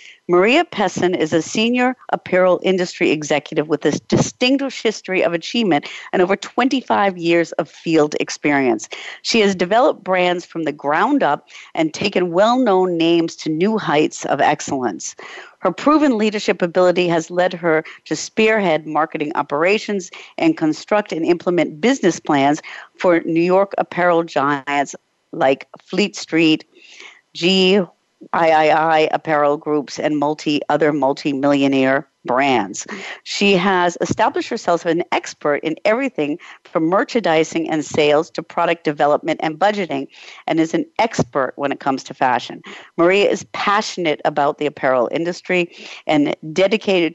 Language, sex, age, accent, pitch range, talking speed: English, female, 50-69, American, 150-195 Hz, 135 wpm